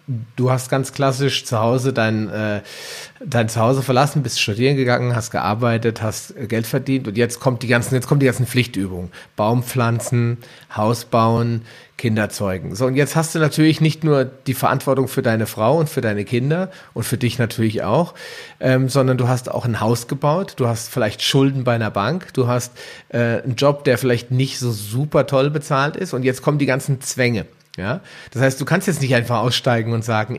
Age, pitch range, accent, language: 40-59, 115-140 Hz, German, German